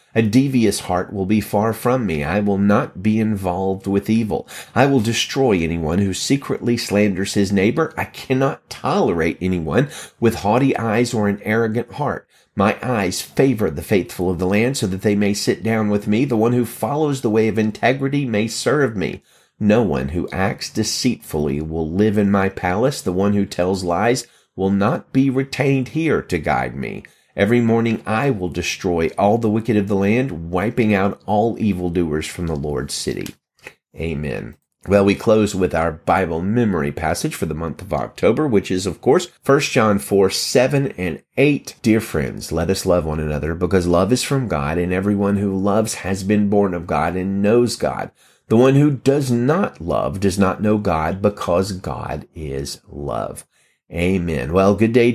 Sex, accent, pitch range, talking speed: male, American, 90-115 Hz, 185 wpm